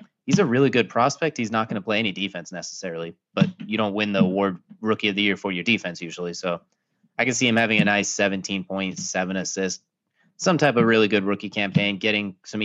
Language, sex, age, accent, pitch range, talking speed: English, male, 20-39, American, 95-120 Hz, 220 wpm